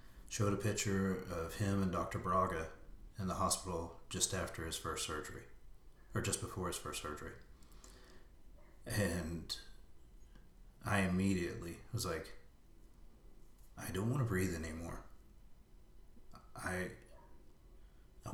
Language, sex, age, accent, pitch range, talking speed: English, male, 30-49, American, 80-100 Hz, 115 wpm